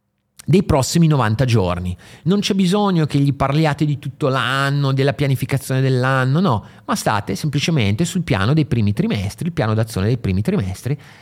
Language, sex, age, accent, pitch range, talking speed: Italian, male, 30-49, native, 105-145 Hz, 165 wpm